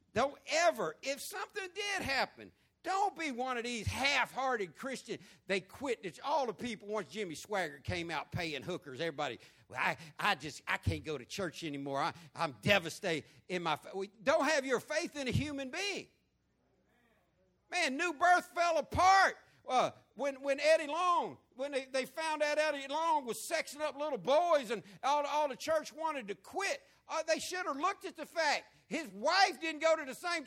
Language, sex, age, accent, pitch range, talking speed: English, male, 60-79, American, 220-320 Hz, 185 wpm